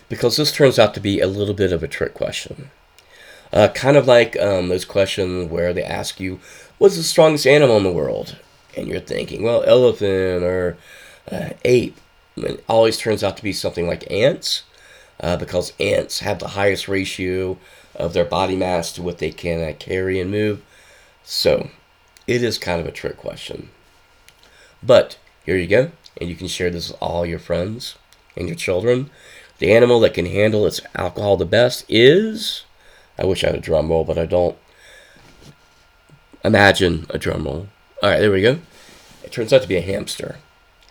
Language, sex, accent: English, male, American